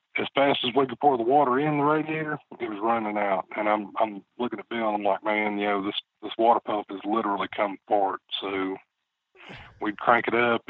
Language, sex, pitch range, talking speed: English, male, 105-120 Hz, 225 wpm